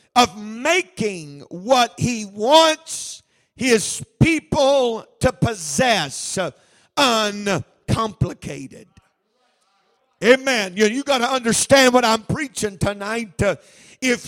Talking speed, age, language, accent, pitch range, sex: 90 wpm, 50-69, English, American, 215-260 Hz, male